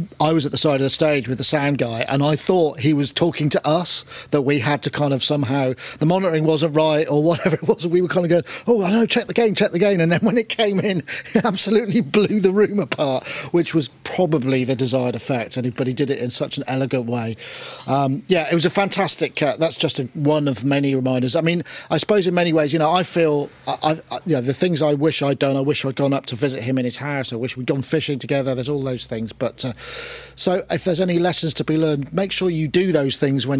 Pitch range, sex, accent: 130-165 Hz, male, British